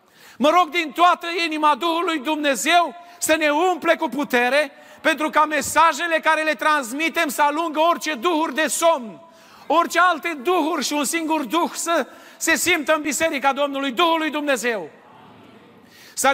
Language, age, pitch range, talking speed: Romanian, 40-59, 285-325 Hz, 145 wpm